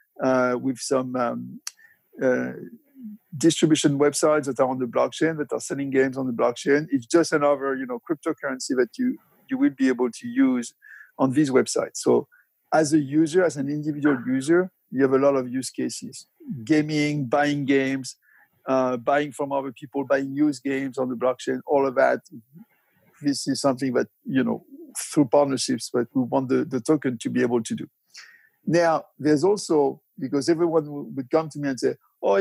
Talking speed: 185 wpm